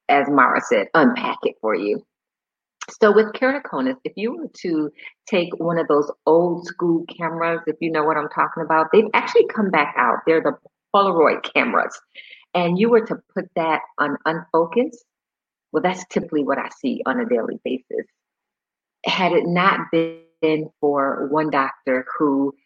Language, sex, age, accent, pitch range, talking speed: English, female, 40-59, American, 150-230 Hz, 165 wpm